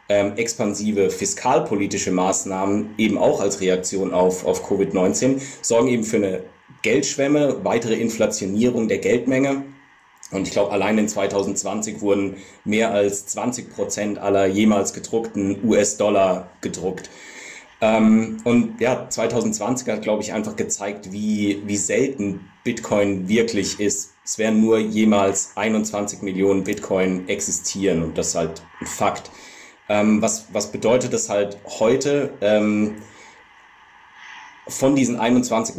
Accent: German